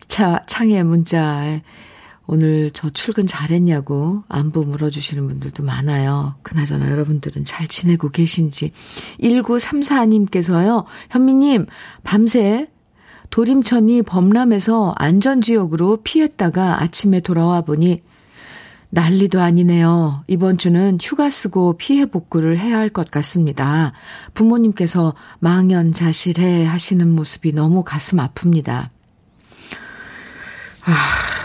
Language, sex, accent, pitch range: Korean, female, native, 160-215 Hz